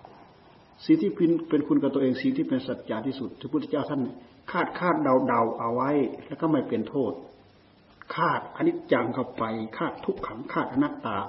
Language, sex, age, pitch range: Thai, male, 60-79, 120-165 Hz